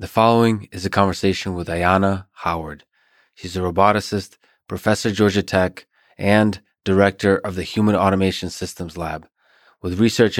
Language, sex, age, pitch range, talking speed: English, male, 20-39, 90-105 Hz, 140 wpm